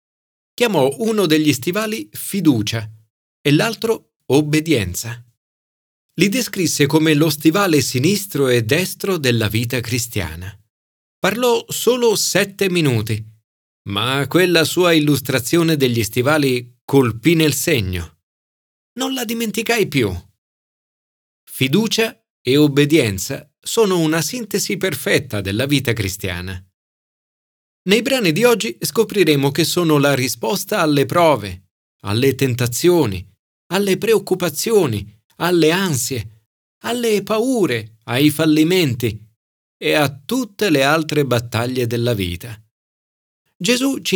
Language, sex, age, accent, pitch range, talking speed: Italian, male, 40-59, native, 115-185 Hz, 105 wpm